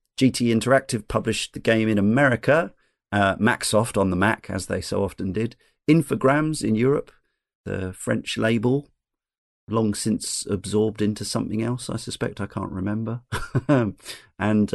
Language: English